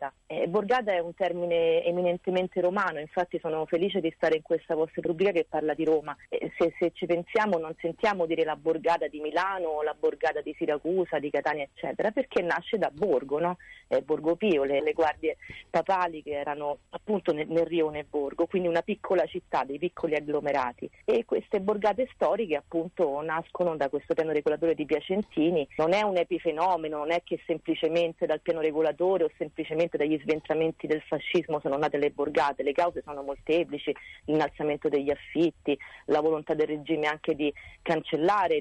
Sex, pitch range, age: female, 150-175 Hz, 40-59